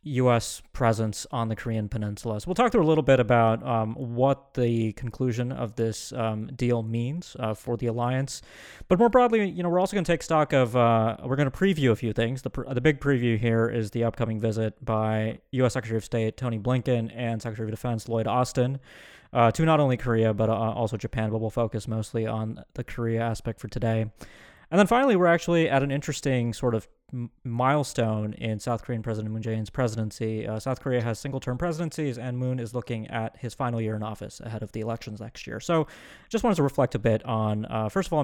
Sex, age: male, 20-39